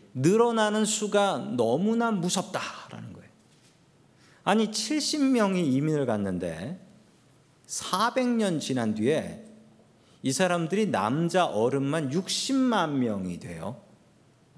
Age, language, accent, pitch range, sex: 40-59, Korean, native, 140-215 Hz, male